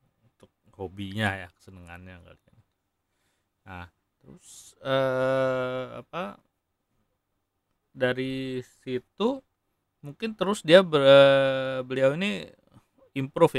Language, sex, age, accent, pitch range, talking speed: Indonesian, male, 30-49, native, 100-130 Hz, 75 wpm